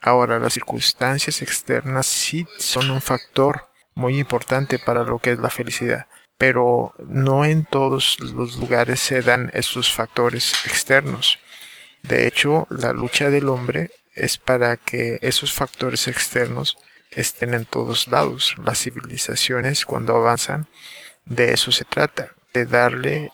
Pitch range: 120-135 Hz